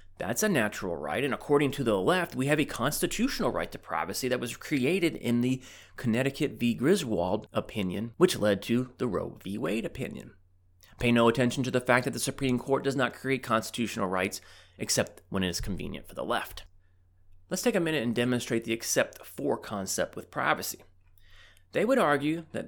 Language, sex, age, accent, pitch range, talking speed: English, male, 30-49, American, 100-140 Hz, 190 wpm